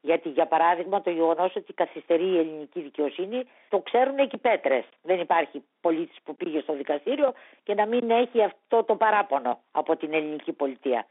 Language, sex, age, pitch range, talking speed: Greek, female, 50-69, 170-250 Hz, 175 wpm